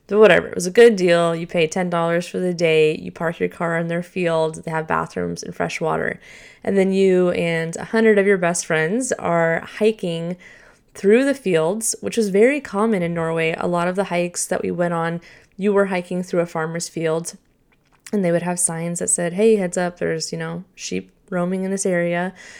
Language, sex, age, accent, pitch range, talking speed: English, female, 10-29, American, 170-205 Hz, 220 wpm